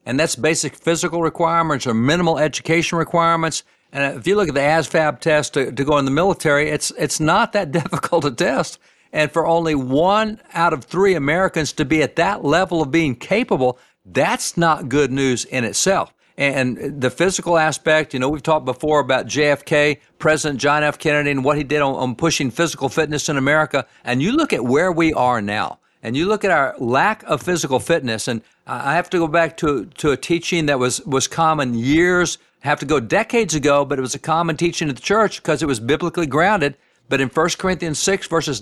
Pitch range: 140-170 Hz